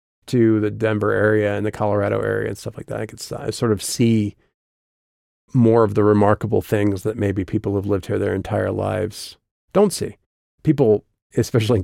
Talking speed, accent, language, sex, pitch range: 190 wpm, American, English, male, 105-125 Hz